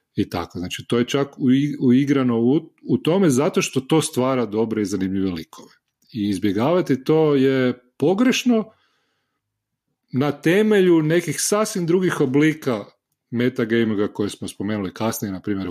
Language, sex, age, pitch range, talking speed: Croatian, male, 40-59, 100-135 Hz, 140 wpm